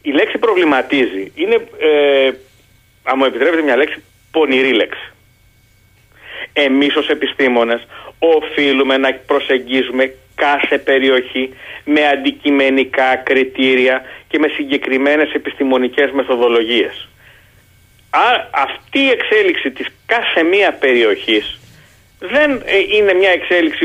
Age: 40-59